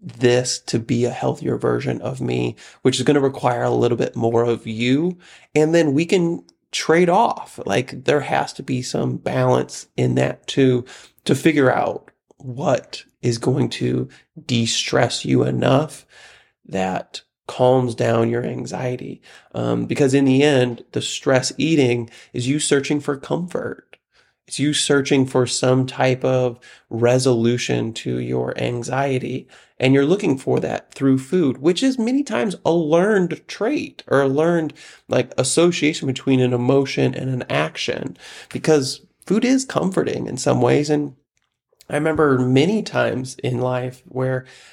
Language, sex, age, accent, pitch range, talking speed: English, male, 30-49, American, 125-150 Hz, 155 wpm